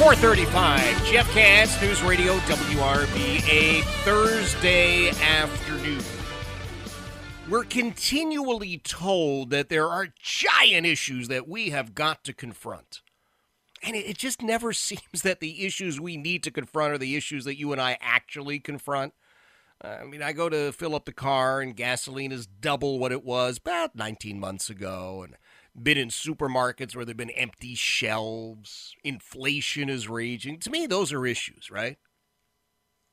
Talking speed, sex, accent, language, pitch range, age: 150 wpm, male, American, English, 125-185 Hz, 30-49